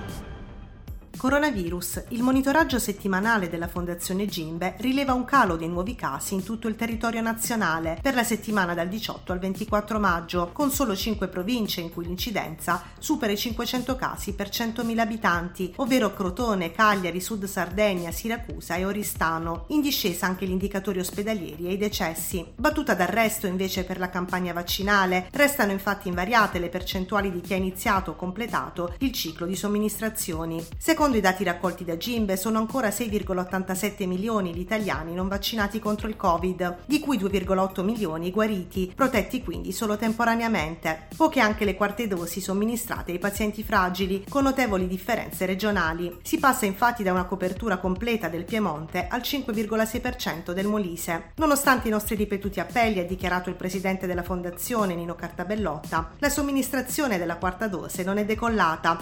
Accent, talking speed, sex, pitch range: native, 155 wpm, female, 180-225 Hz